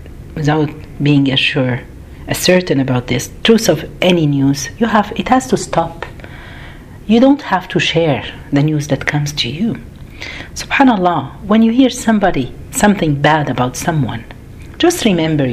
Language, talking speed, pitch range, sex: Arabic, 155 wpm, 150-235 Hz, female